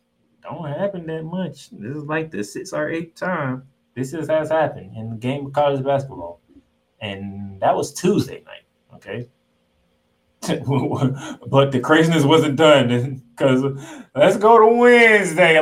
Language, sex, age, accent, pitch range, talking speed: English, male, 20-39, American, 110-170 Hz, 145 wpm